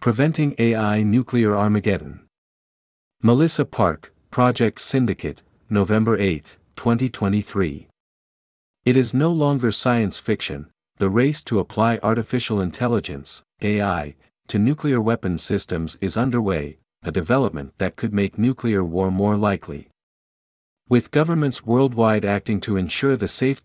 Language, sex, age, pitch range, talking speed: Vietnamese, male, 50-69, 95-120 Hz, 120 wpm